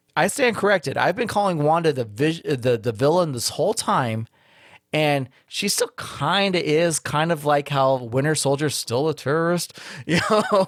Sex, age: male, 30-49